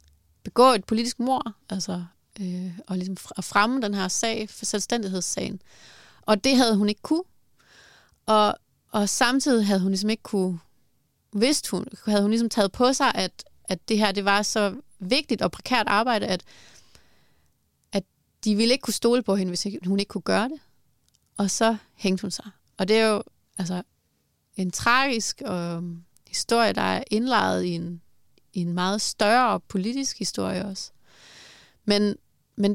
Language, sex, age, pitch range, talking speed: Danish, female, 30-49, 185-225 Hz, 165 wpm